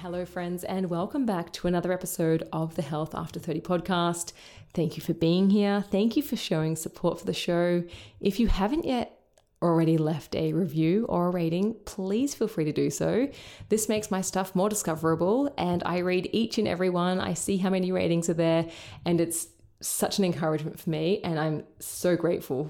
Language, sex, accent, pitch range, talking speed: English, female, Australian, 165-200 Hz, 200 wpm